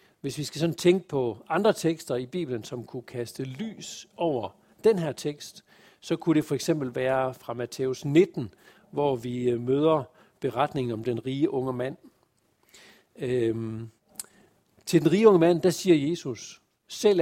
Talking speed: 160 wpm